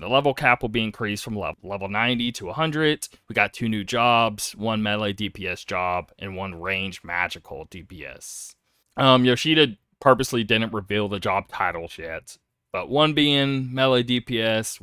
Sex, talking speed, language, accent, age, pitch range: male, 160 wpm, English, American, 20-39, 100-125 Hz